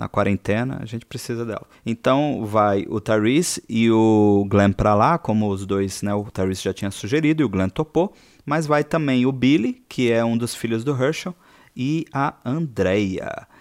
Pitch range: 110-155 Hz